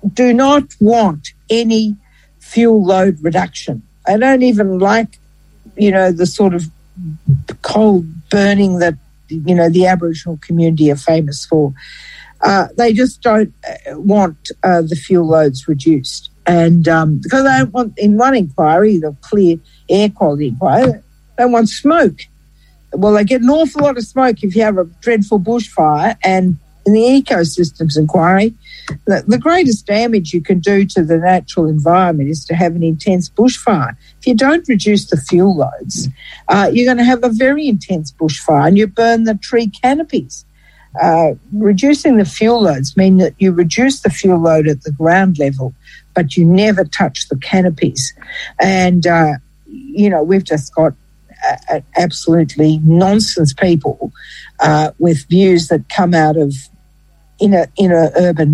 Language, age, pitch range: English, 60-79, 160-210 Hz